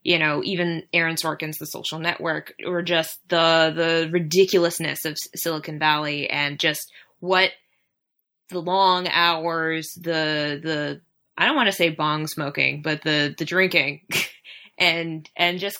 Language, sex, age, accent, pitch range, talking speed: English, female, 20-39, American, 165-190 Hz, 150 wpm